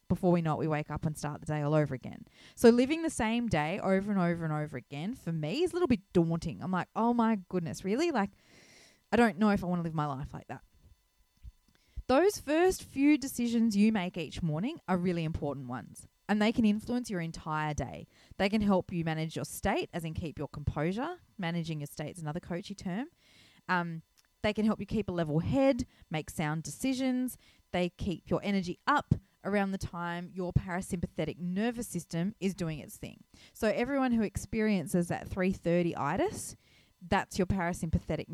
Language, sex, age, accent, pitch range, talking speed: English, female, 20-39, Australian, 155-205 Hz, 200 wpm